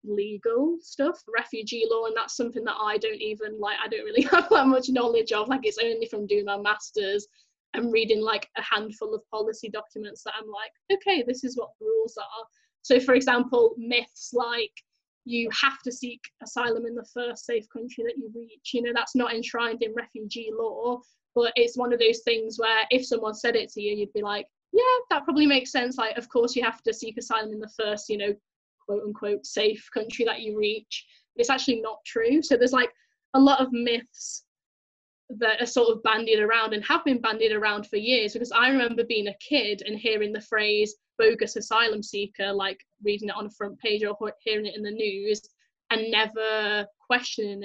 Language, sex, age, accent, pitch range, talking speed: English, female, 10-29, British, 210-245 Hz, 210 wpm